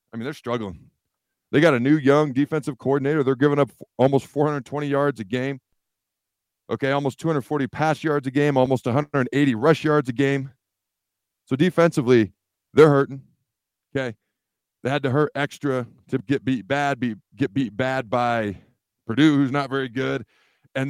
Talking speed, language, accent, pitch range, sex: 165 wpm, English, American, 115-145 Hz, male